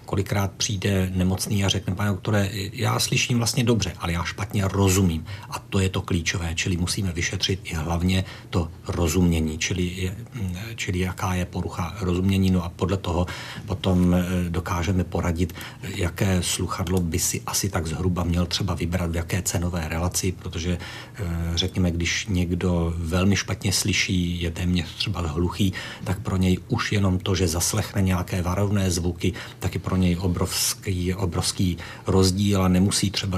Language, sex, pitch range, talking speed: Czech, male, 90-100 Hz, 155 wpm